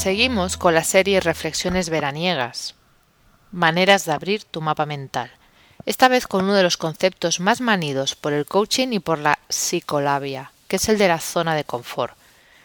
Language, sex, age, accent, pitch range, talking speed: Spanish, female, 30-49, Spanish, 150-195 Hz, 170 wpm